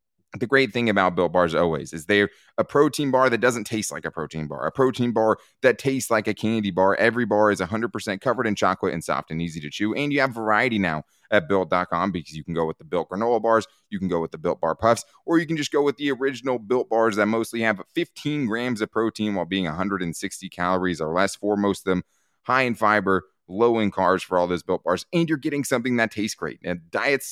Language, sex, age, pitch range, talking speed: English, male, 20-39, 95-125 Hz, 245 wpm